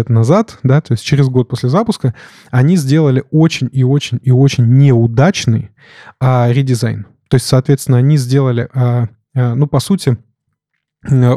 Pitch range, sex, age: 125-145 Hz, male, 20-39